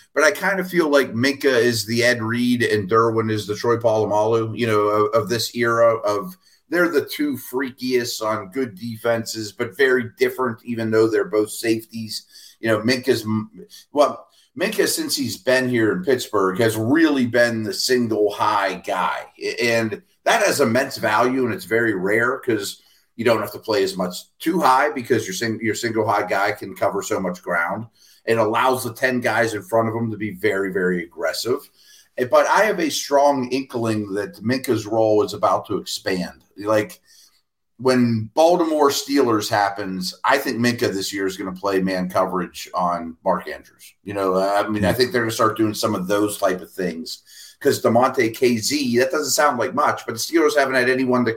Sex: male